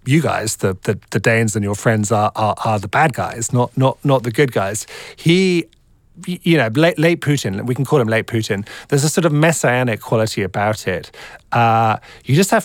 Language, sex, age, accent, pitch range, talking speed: Danish, male, 30-49, British, 110-145 Hz, 215 wpm